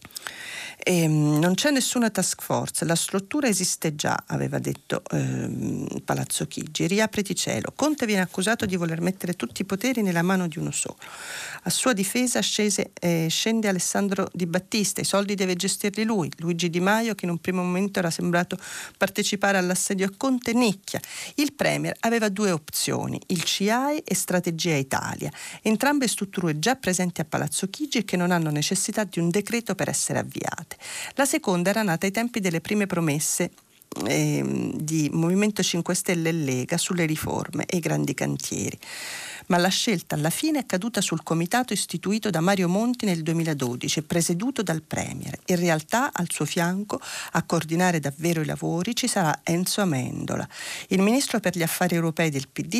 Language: Italian